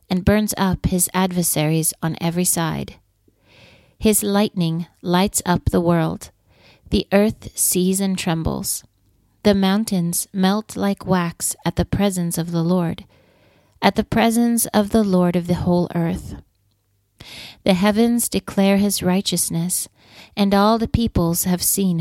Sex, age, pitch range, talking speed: female, 40-59, 165-195 Hz, 140 wpm